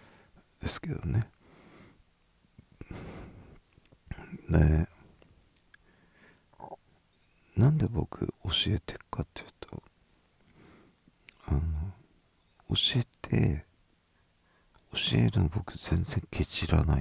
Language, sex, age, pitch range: Japanese, male, 50-69, 75-90 Hz